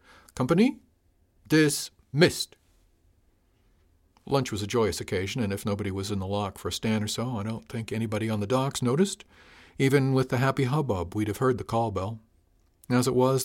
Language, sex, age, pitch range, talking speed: English, male, 50-69, 100-130 Hz, 185 wpm